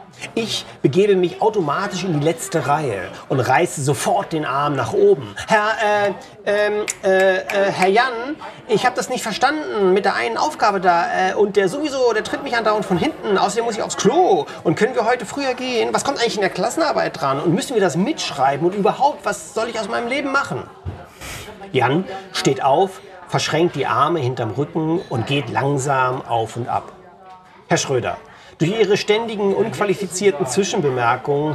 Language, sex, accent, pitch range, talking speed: German, male, German, 140-200 Hz, 180 wpm